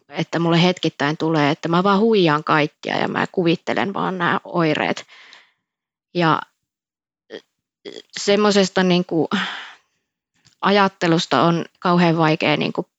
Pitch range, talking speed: 155-190 Hz, 95 wpm